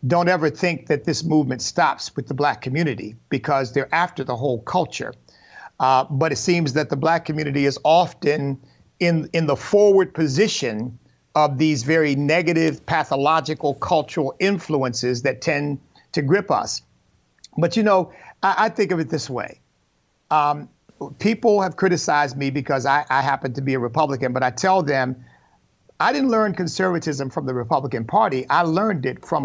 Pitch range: 140-175 Hz